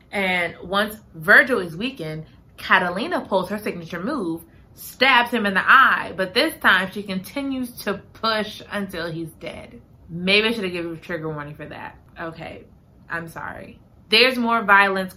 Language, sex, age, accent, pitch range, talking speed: English, female, 20-39, American, 170-235 Hz, 165 wpm